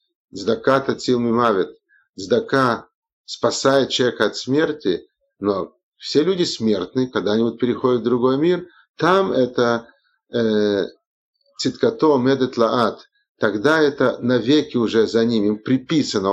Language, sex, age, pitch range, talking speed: Russian, male, 50-69, 115-160 Hz, 105 wpm